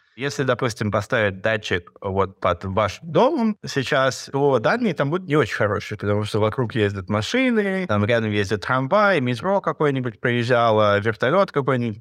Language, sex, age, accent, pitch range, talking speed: Russian, male, 20-39, native, 105-140 Hz, 150 wpm